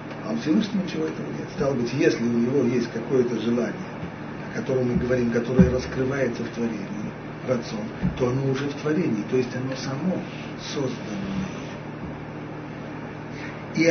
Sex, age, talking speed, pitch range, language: male, 60-79, 150 wpm, 125-175 Hz, Russian